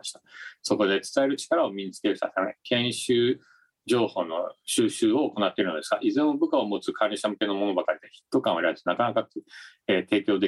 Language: Japanese